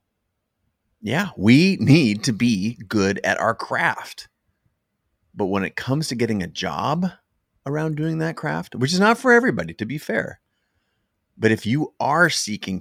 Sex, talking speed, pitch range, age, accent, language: male, 160 wpm, 95-130 Hz, 30-49, American, English